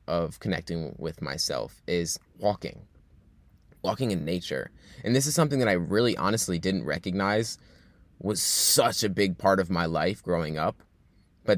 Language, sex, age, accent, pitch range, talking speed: English, male, 20-39, American, 85-105 Hz, 155 wpm